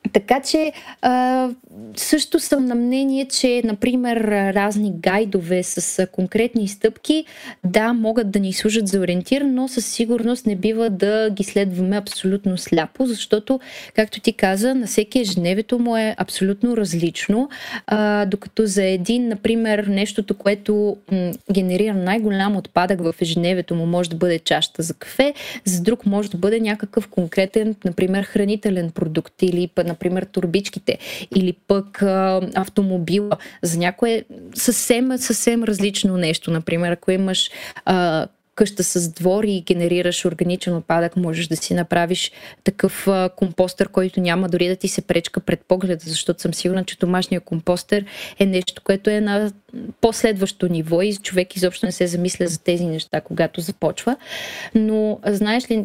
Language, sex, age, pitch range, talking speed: Bulgarian, female, 20-39, 180-225 Hz, 150 wpm